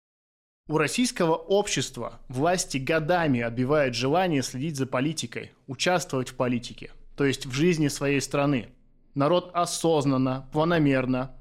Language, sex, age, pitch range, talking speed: Russian, male, 20-39, 130-165 Hz, 115 wpm